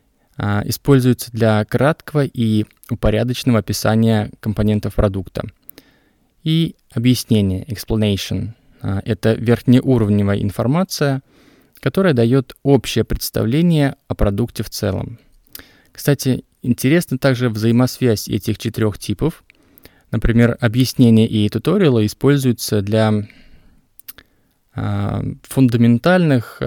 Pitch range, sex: 105-130 Hz, male